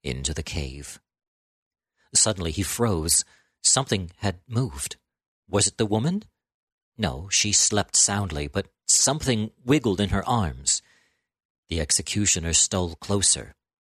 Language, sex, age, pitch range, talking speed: English, male, 50-69, 80-105 Hz, 115 wpm